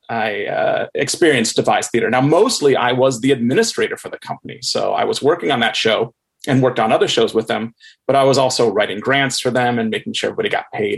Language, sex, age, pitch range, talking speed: English, male, 30-49, 115-160 Hz, 230 wpm